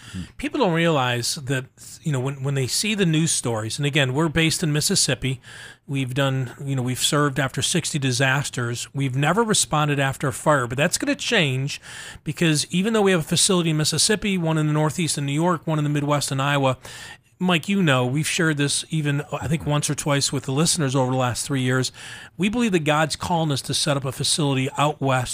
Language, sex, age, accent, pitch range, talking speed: English, male, 40-59, American, 135-165 Hz, 225 wpm